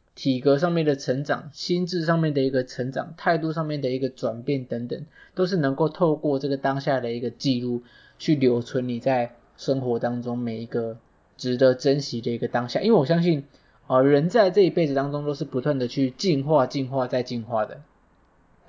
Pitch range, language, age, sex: 125-155 Hz, Chinese, 20-39, male